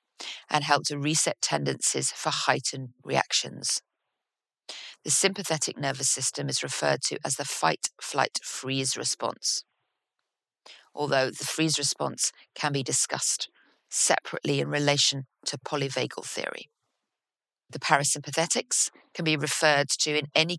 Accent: British